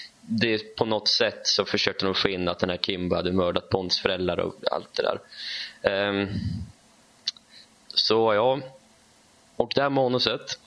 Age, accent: 20-39, native